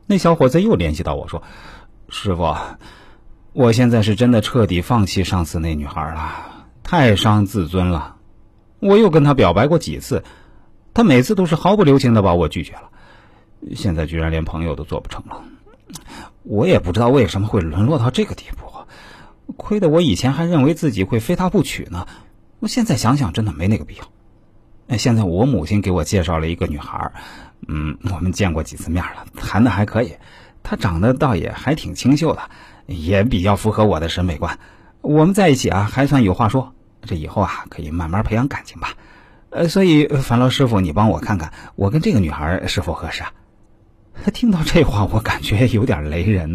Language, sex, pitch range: Chinese, male, 90-125 Hz